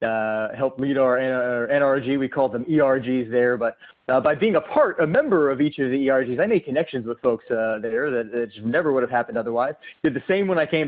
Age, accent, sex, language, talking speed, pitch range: 30-49, American, male, English, 245 wpm, 120-145 Hz